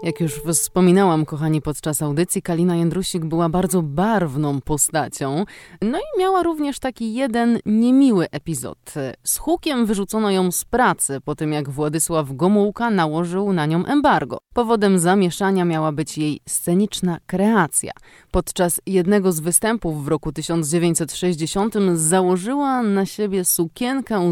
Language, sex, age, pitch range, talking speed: Polish, female, 20-39, 155-205 Hz, 130 wpm